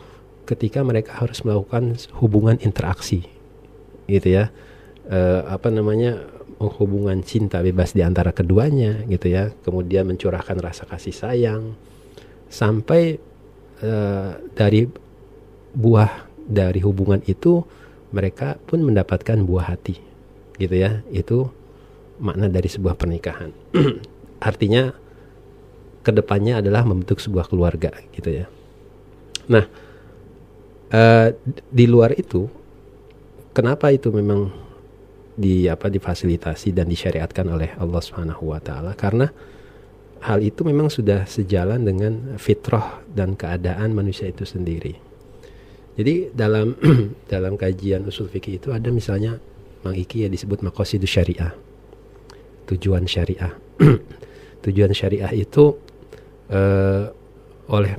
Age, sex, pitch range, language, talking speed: 40-59, male, 95-115 Hz, Indonesian, 105 wpm